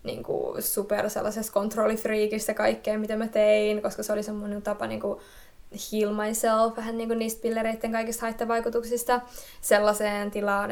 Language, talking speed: Finnish, 135 wpm